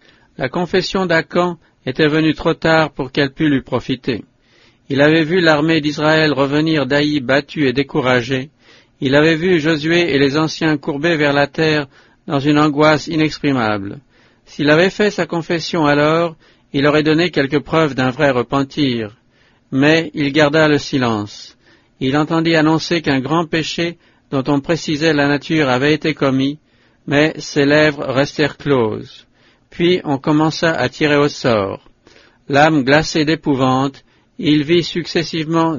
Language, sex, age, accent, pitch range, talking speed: English, male, 50-69, French, 135-160 Hz, 150 wpm